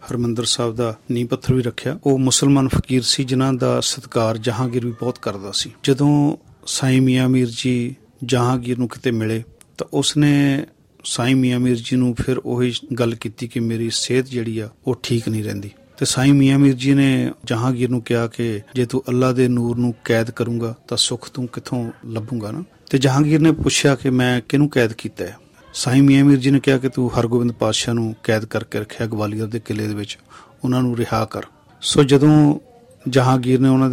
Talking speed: 195 wpm